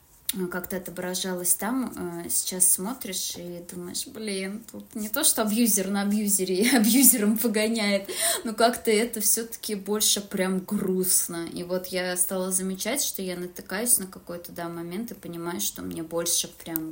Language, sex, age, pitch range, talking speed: Russian, female, 20-39, 175-205 Hz, 150 wpm